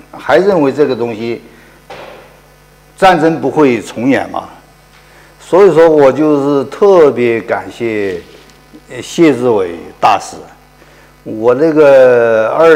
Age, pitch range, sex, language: 50-69, 115-155 Hz, male, Chinese